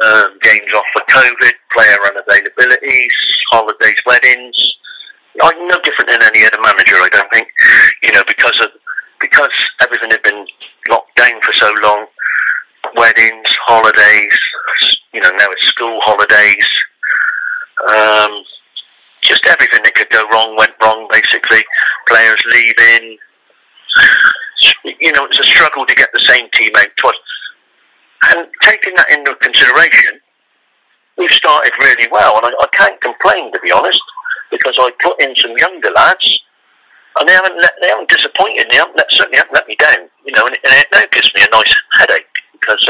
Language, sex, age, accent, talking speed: English, male, 40-59, British, 160 wpm